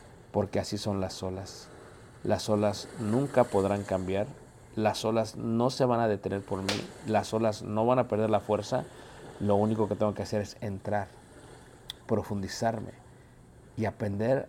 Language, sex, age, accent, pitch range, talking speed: Spanish, male, 50-69, Mexican, 105-115 Hz, 155 wpm